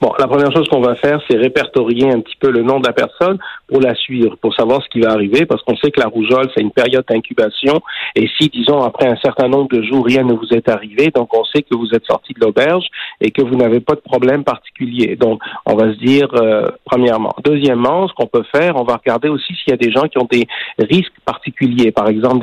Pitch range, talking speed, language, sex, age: 115-135 Hz, 255 wpm, French, male, 50-69